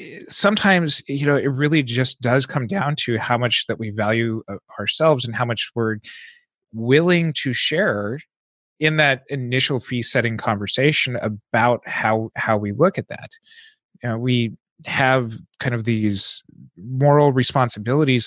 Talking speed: 150 wpm